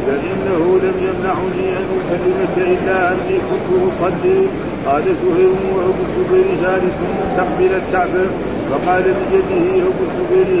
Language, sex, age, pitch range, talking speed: Arabic, male, 50-69, 185-195 Hz, 115 wpm